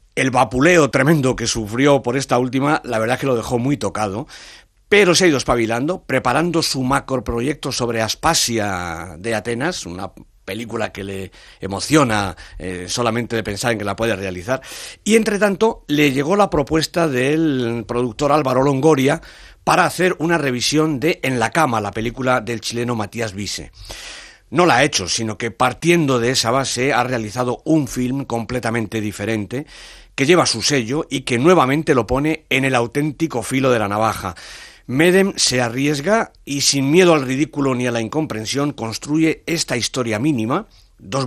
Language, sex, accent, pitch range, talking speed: English, male, Spanish, 110-150 Hz, 170 wpm